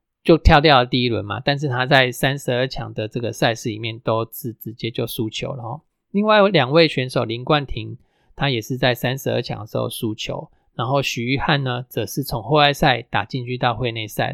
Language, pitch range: Chinese, 115-145 Hz